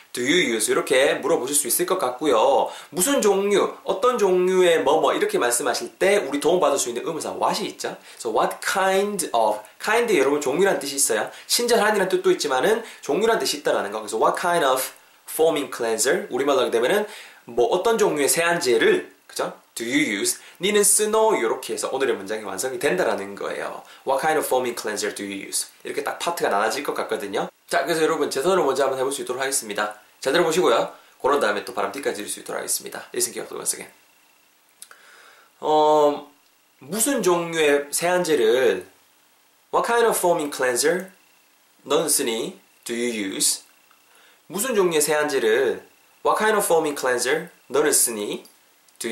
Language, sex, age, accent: Korean, male, 20-39, native